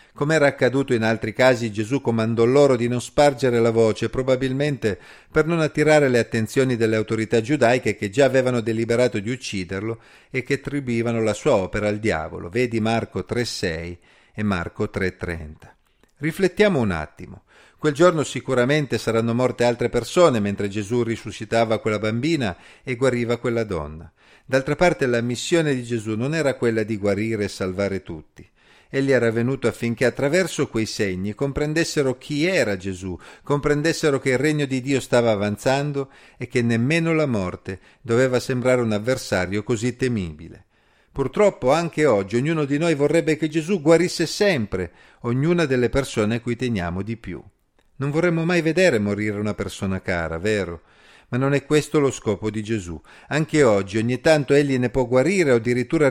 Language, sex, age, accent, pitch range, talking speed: Italian, male, 40-59, native, 110-140 Hz, 165 wpm